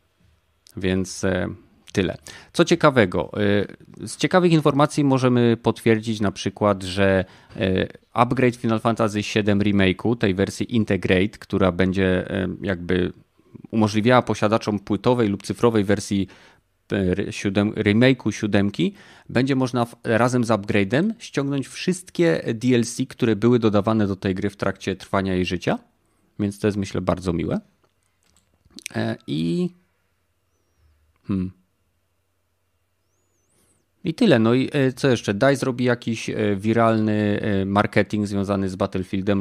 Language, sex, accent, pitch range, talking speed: Polish, male, native, 95-115 Hz, 110 wpm